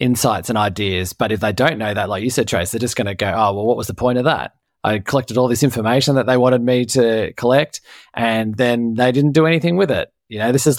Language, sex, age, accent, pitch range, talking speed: English, male, 20-39, Australian, 110-135 Hz, 270 wpm